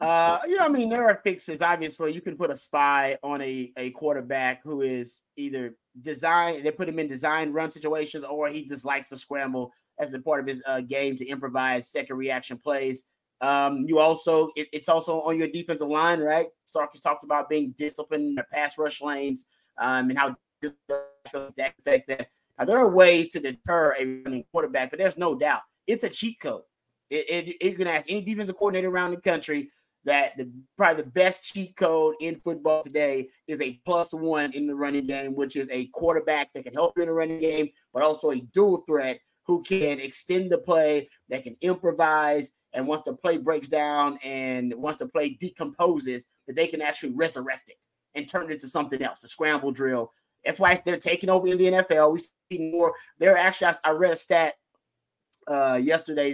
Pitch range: 140-170 Hz